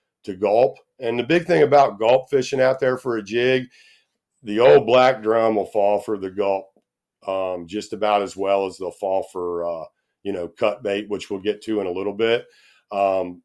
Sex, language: male, English